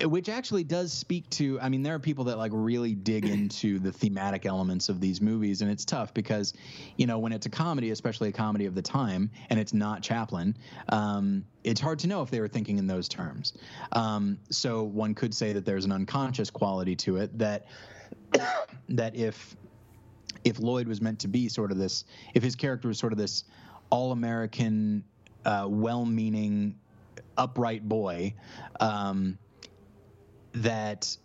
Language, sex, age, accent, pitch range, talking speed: English, male, 30-49, American, 100-115 Hz, 175 wpm